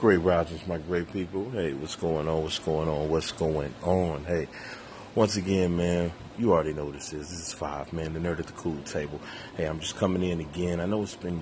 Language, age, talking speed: English, 30-49, 235 wpm